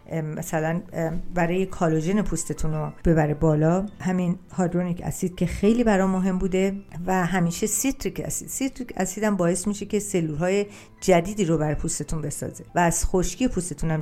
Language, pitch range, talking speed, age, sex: Persian, 165-200 Hz, 150 wpm, 50-69, female